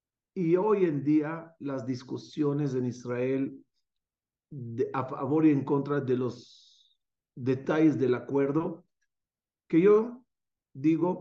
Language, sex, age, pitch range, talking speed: Spanish, male, 50-69, 130-180 Hz, 110 wpm